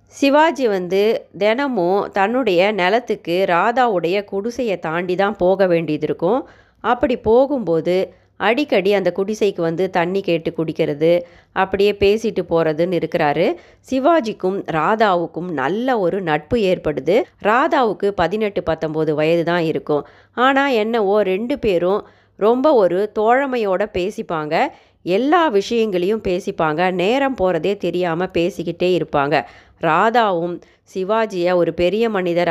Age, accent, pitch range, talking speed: 30-49, native, 170-220 Hz, 105 wpm